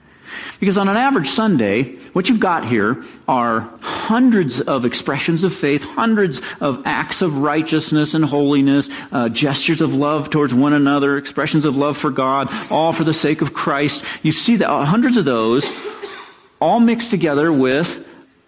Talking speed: 160 wpm